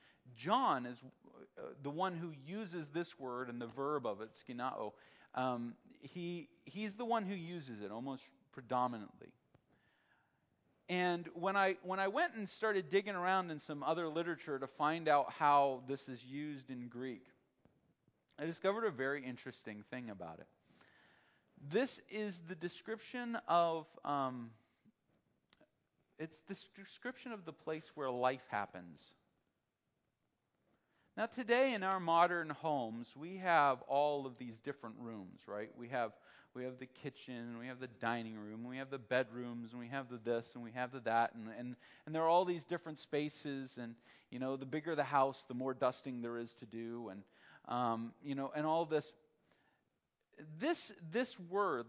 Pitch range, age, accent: 125-175 Hz, 40-59, American